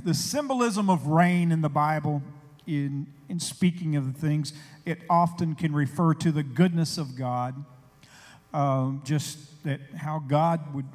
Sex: male